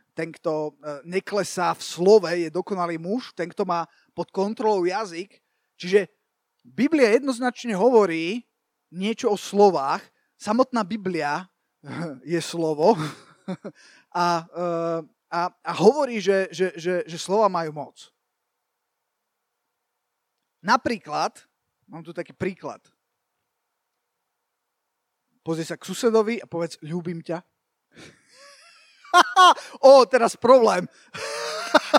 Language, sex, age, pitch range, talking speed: Slovak, male, 30-49, 175-250 Hz, 100 wpm